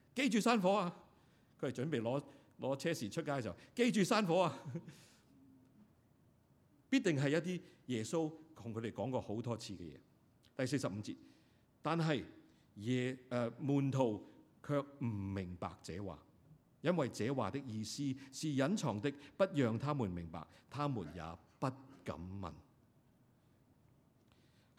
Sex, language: male, Chinese